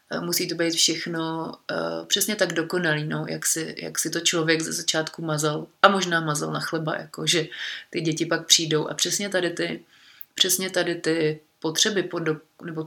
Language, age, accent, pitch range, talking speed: Czech, 30-49, native, 160-175 Hz, 180 wpm